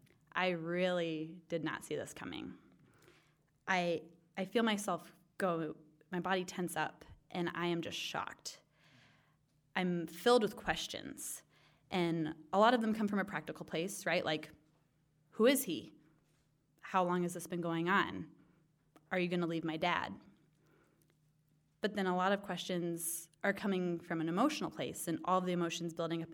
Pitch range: 155-185 Hz